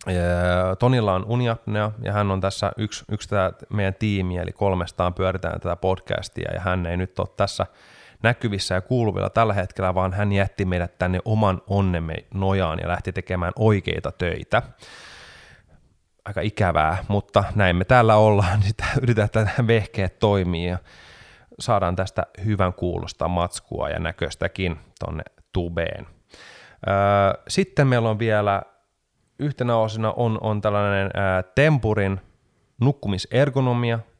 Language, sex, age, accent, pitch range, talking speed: Finnish, male, 30-49, native, 90-110 Hz, 130 wpm